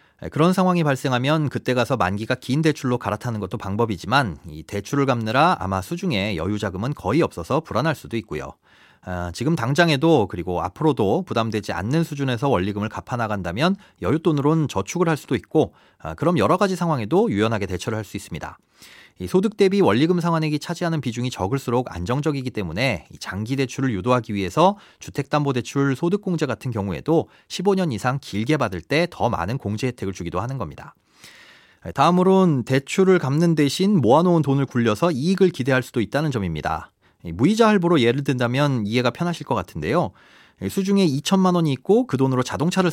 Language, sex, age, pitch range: Korean, male, 30-49, 110-170 Hz